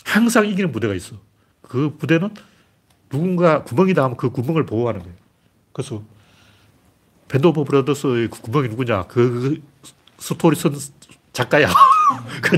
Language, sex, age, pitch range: Korean, male, 40-59, 105-160 Hz